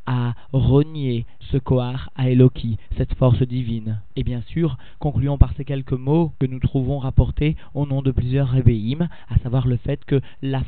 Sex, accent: male, French